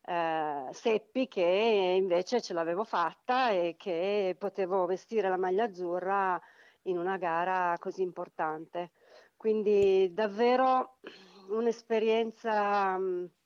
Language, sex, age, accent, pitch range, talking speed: Italian, female, 40-59, native, 185-230 Hz, 95 wpm